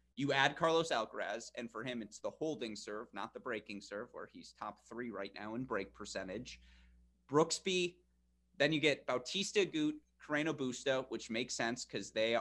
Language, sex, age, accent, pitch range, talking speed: English, male, 30-49, American, 105-160 Hz, 180 wpm